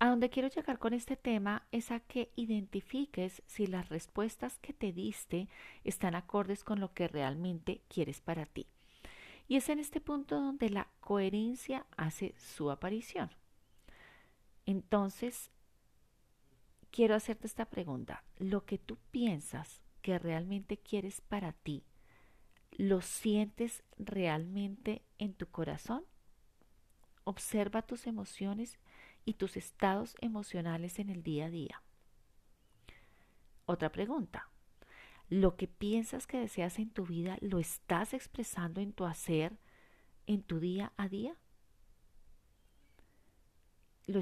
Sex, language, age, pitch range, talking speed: female, Spanish, 40-59, 170-225 Hz, 125 wpm